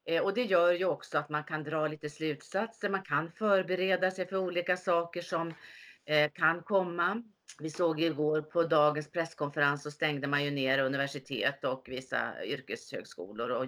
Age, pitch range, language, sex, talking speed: 40-59, 150-195 Hz, Swedish, female, 160 wpm